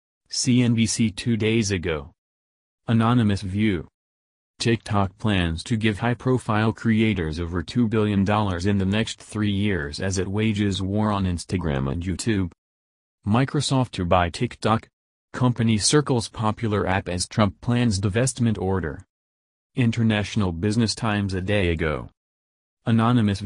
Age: 30-49